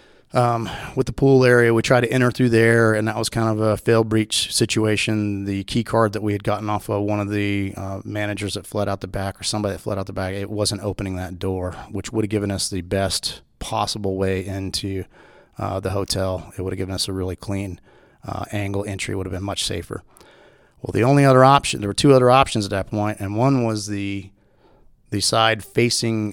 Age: 30-49